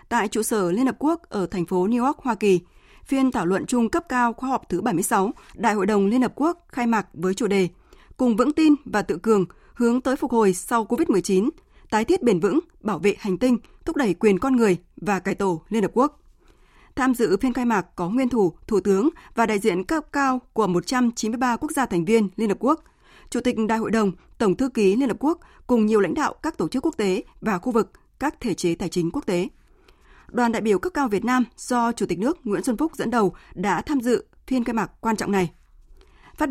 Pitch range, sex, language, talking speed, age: 200-260 Hz, female, Vietnamese, 240 wpm, 20-39